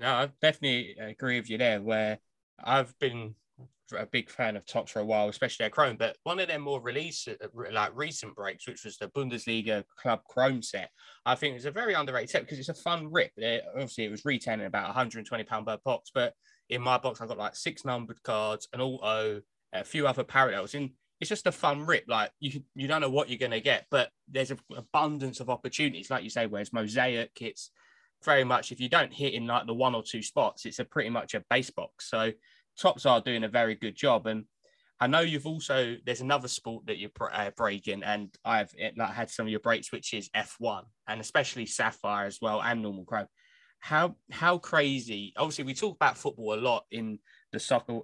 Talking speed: 220 wpm